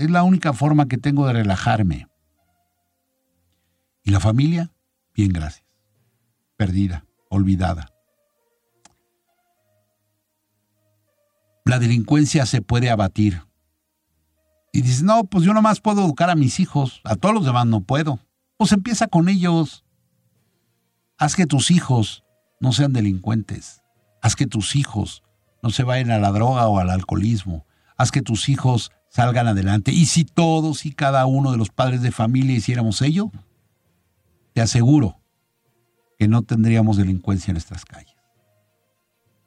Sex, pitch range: male, 100-140 Hz